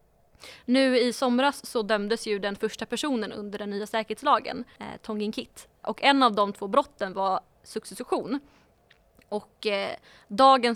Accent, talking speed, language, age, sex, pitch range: Swedish, 140 wpm, English, 20-39, female, 200-235 Hz